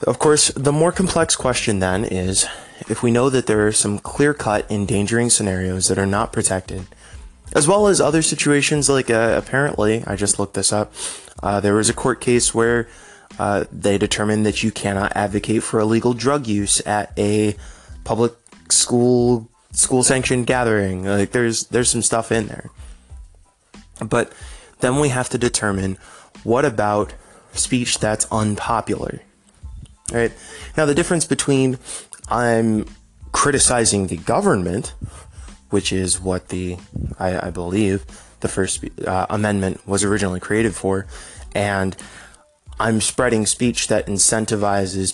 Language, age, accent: English, 20-39, American